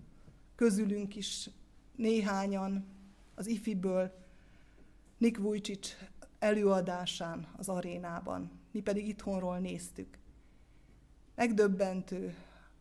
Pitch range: 185-240 Hz